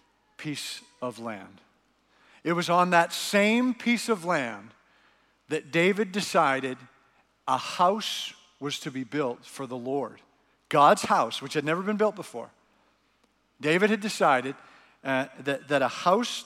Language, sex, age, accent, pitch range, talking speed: English, male, 50-69, American, 150-200 Hz, 140 wpm